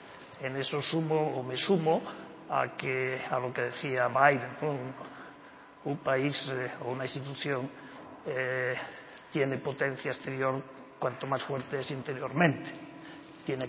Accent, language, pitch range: Spanish, Spanish, 130-160 Hz